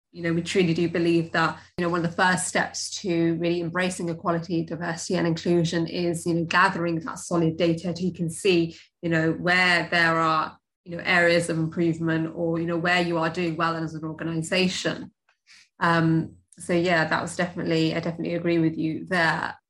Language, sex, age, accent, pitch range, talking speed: English, female, 20-39, British, 165-185 Hz, 200 wpm